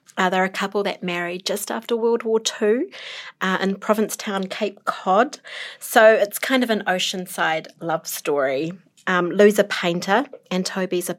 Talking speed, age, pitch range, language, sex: 170 wpm, 30-49, 170-220 Hz, English, female